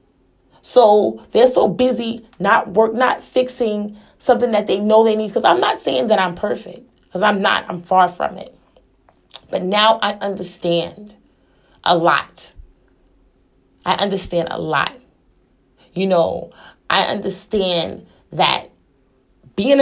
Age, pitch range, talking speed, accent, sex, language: 30-49, 195-255 Hz, 135 wpm, American, female, English